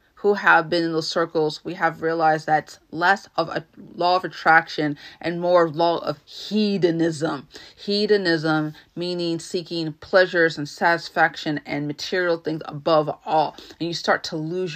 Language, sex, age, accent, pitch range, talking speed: English, female, 30-49, American, 155-180 Hz, 155 wpm